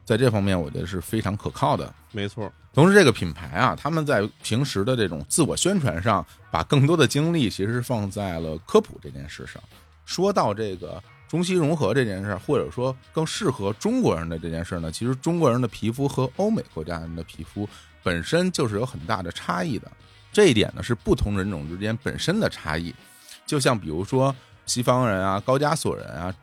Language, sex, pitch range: Chinese, male, 90-125 Hz